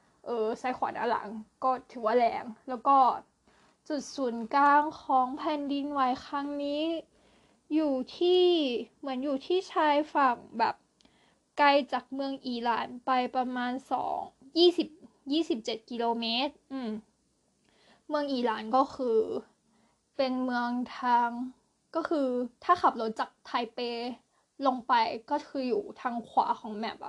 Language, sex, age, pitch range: Thai, female, 10-29, 235-285 Hz